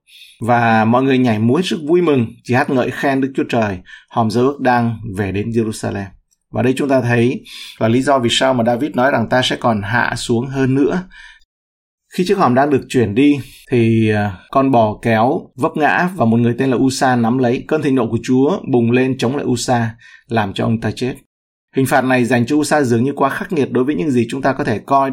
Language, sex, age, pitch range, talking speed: Vietnamese, male, 20-39, 115-135 Hz, 235 wpm